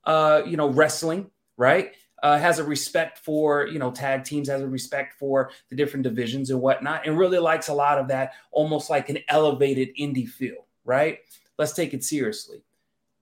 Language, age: English, 30-49